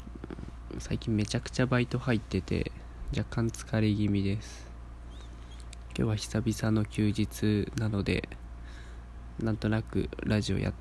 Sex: male